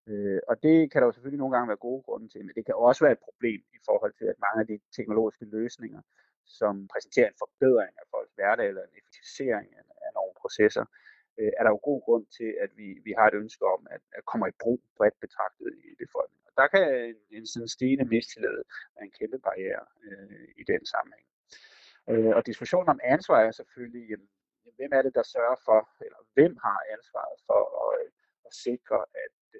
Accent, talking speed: native, 190 wpm